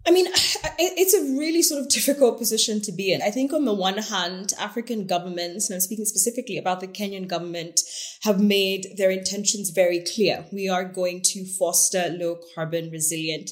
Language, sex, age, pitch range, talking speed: English, female, 20-39, 175-225 Hz, 180 wpm